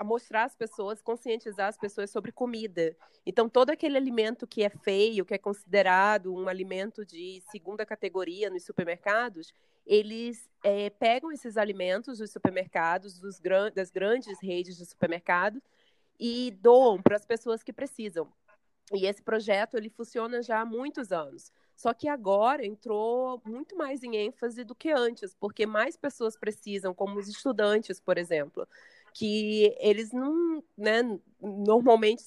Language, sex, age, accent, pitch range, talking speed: English, female, 20-39, Brazilian, 200-245 Hz, 150 wpm